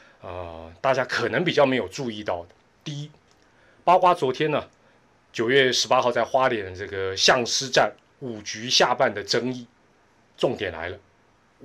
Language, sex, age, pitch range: Chinese, male, 30-49, 110-155 Hz